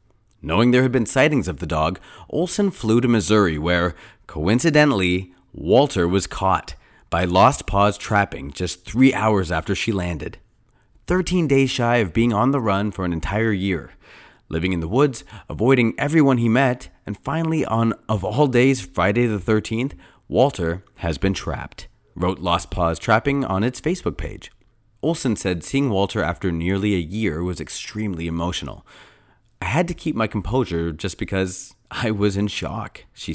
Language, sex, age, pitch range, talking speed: English, male, 30-49, 90-120 Hz, 165 wpm